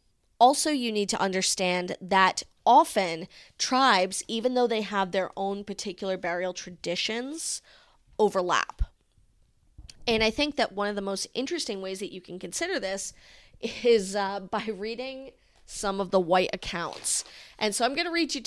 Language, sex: English, female